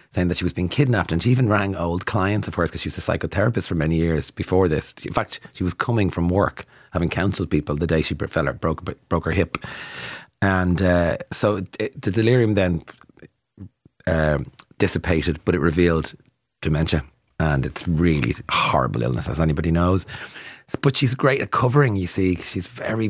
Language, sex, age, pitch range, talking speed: English, male, 30-49, 85-105 Hz, 190 wpm